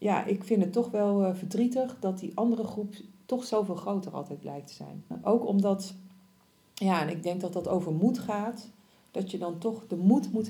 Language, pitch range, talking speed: Dutch, 175-235 Hz, 205 wpm